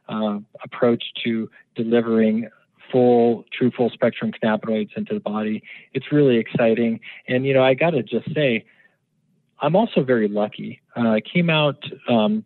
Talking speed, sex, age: 150 wpm, male, 40-59